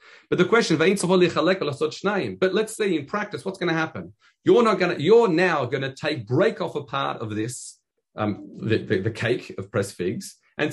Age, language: 40-59, English